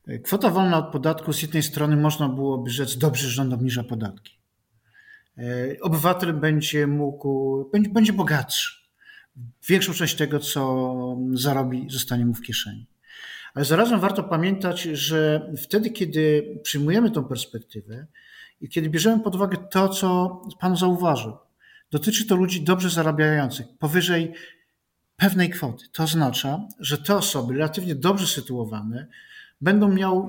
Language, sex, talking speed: Polish, male, 135 wpm